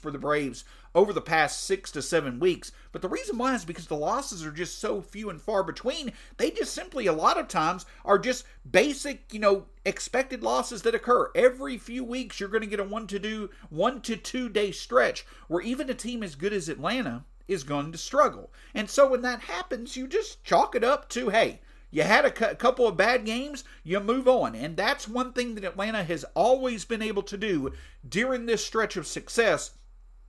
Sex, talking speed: male, 205 wpm